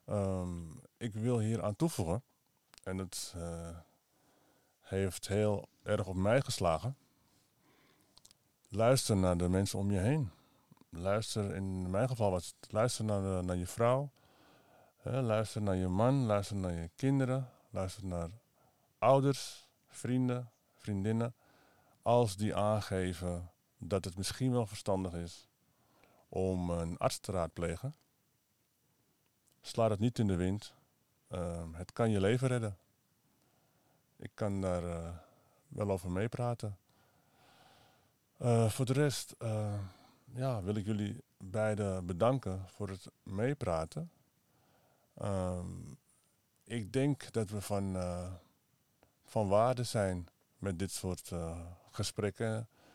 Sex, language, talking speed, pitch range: male, Dutch, 120 wpm, 95-125 Hz